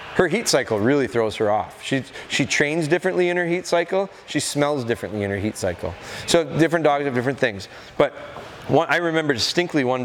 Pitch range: 115-145 Hz